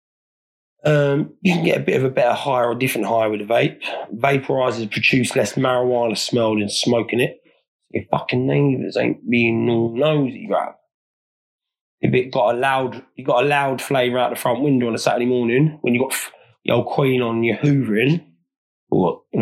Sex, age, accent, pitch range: male, 30-49, British, 115-140 Hz